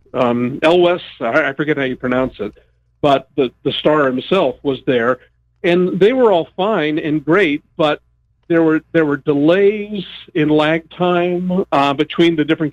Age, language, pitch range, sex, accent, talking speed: 50-69, English, 140-170 Hz, male, American, 165 wpm